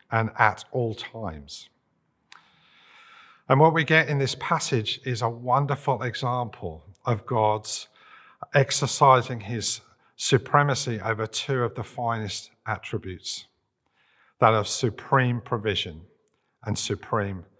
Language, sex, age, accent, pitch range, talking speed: English, male, 50-69, British, 115-140 Hz, 110 wpm